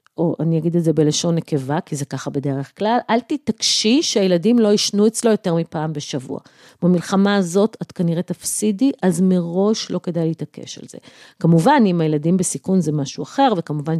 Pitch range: 165-215 Hz